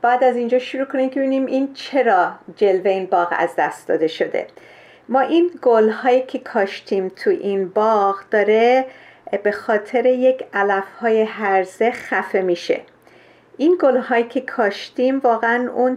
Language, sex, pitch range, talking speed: Persian, female, 205-260 Hz, 145 wpm